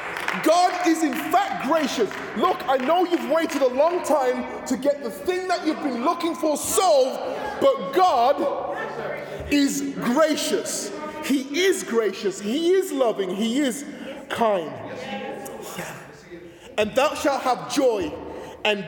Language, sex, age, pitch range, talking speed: English, male, 20-39, 240-330 Hz, 135 wpm